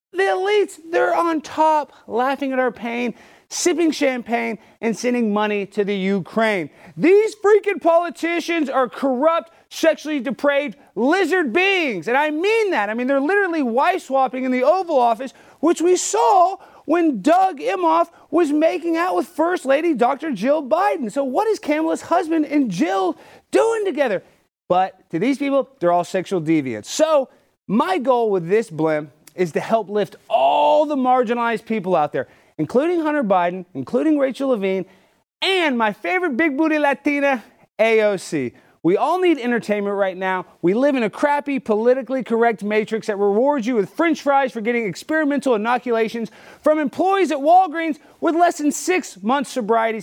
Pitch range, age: 220-330 Hz, 30-49